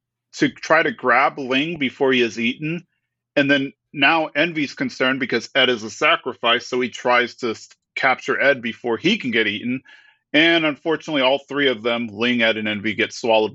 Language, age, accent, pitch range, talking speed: English, 40-59, American, 115-150 Hz, 185 wpm